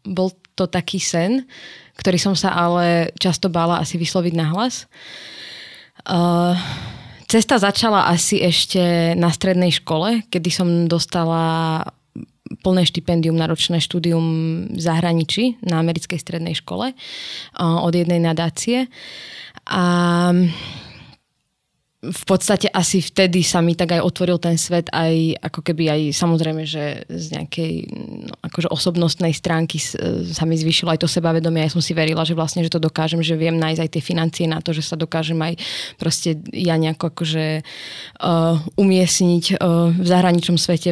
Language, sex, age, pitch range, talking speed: Slovak, female, 20-39, 165-180 Hz, 145 wpm